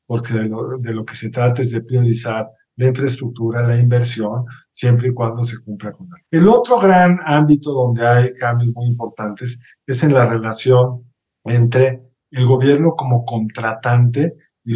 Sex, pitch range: male, 120-140 Hz